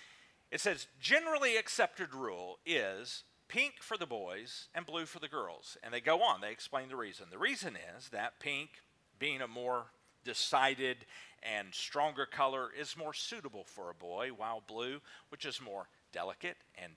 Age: 50-69